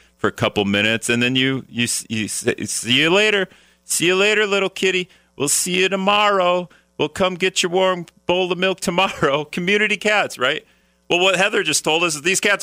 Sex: male